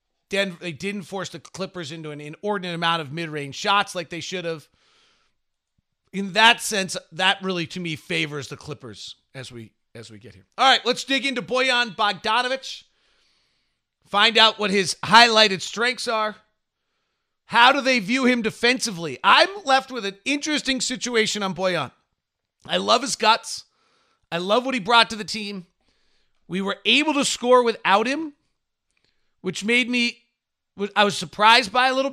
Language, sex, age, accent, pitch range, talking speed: English, male, 40-59, American, 180-245 Hz, 165 wpm